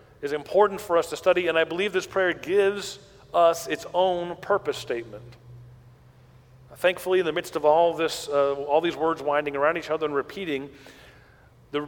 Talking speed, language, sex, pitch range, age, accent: 175 wpm, English, male, 140-185 Hz, 40-59, American